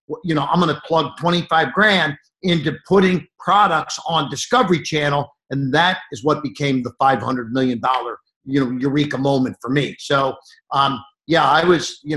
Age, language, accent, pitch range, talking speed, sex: 50-69, English, American, 145-175 Hz, 175 wpm, male